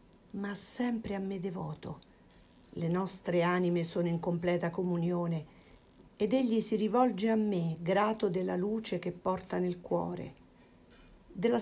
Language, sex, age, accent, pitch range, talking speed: Italian, female, 50-69, native, 175-220 Hz, 135 wpm